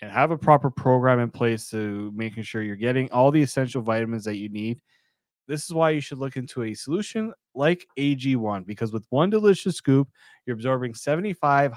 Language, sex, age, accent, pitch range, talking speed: English, male, 20-39, American, 115-150 Hz, 200 wpm